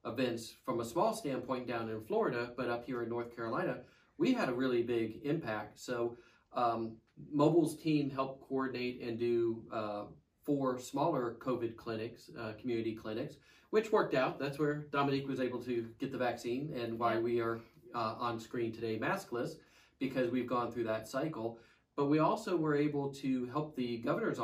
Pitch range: 115-135 Hz